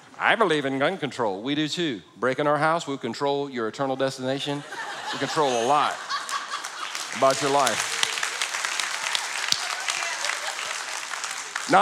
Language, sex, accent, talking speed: English, male, American, 120 wpm